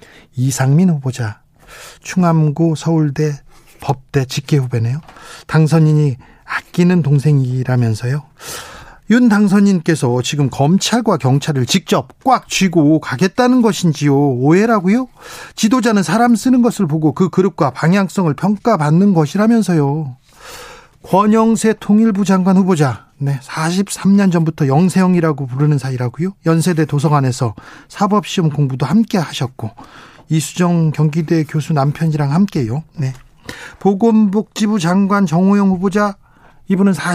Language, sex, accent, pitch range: Korean, male, native, 150-195 Hz